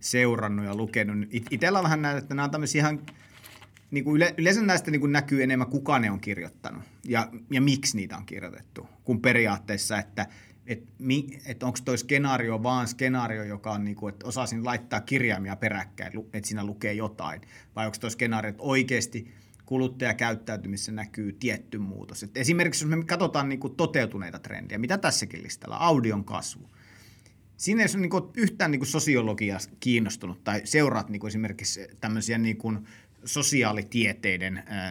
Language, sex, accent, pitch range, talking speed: Finnish, male, native, 105-135 Hz, 155 wpm